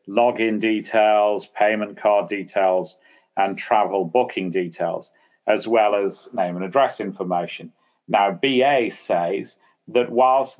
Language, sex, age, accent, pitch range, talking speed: English, male, 40-59, British, 95-125 Hz, 120 wpm